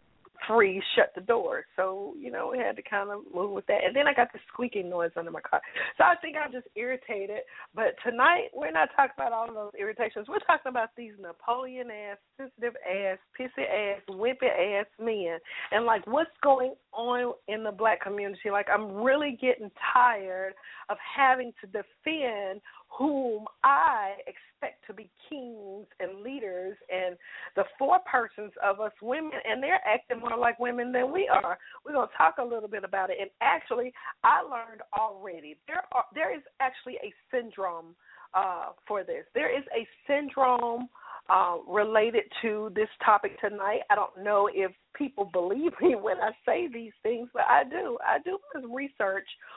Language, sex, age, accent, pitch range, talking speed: English, female, 40-59, American, 205-270 Hz, 175 wpm